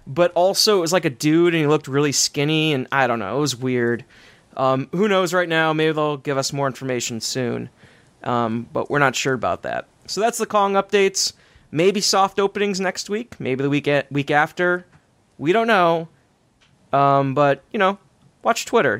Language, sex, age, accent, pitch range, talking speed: English, male, 20-39, American, 135-175 Hz, 200 wpm